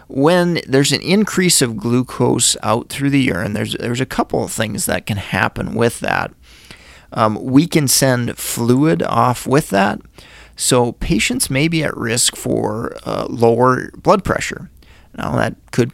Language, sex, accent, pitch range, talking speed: English, male, American, 115-135 Hz, 160 wpm